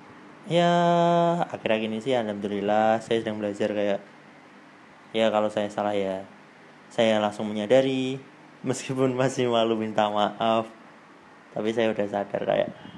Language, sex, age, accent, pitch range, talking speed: Indonesian, male, 20-39, native, 105-120 Hz, 130 wpm